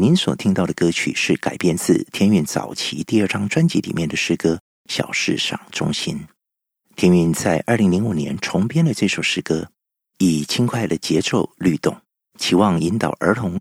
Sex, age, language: male, 50-69, Chinese